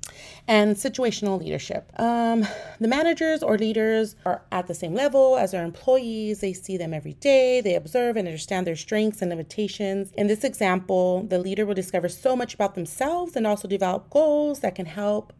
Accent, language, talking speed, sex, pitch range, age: American, English, 185 wpm, female, 180-235 Hz, 30-49